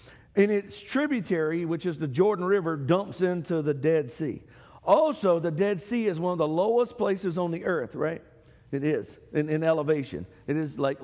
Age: 50-69